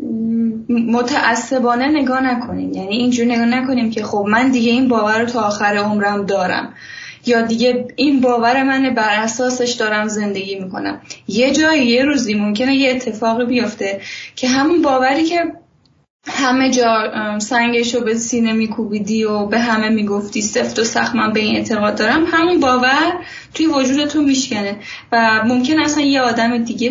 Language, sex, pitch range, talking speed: Persian, female, 220-265 Hz, 155 wpm